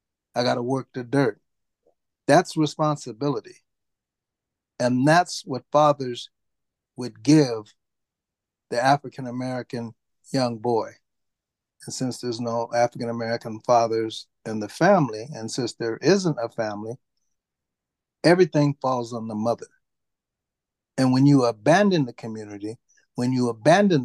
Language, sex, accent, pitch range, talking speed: English, male, American, 115-160 Hz, 115 wpm